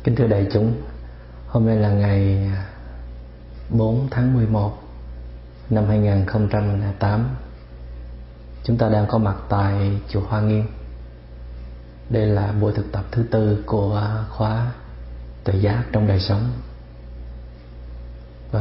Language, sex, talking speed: Vietnamese, male, 120 wpm